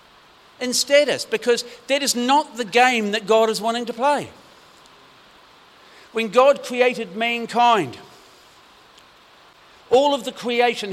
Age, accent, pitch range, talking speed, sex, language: 50-69, British, 190-245 Hz, 120 wpm, male, English